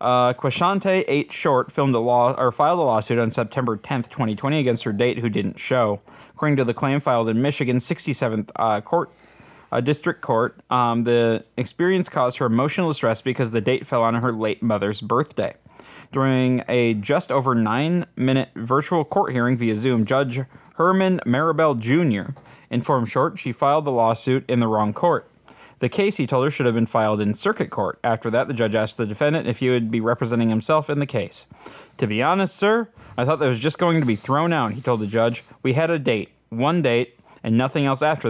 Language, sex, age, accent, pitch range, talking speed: English, male, 20-39, American, 115-150 Hz, 205 wpm